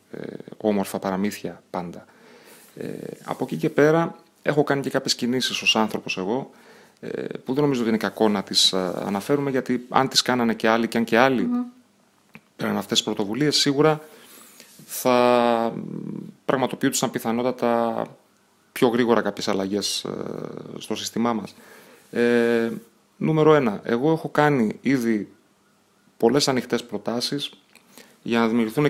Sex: male